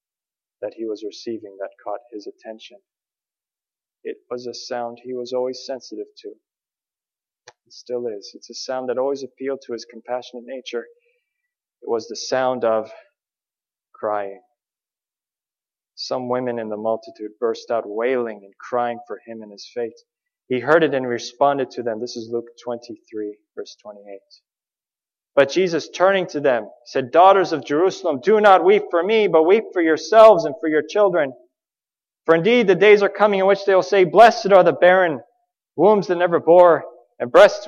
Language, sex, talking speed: English, male, 170 wpm